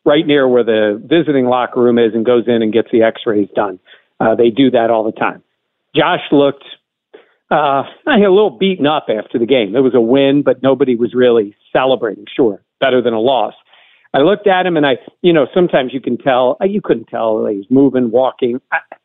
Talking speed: 205 wpm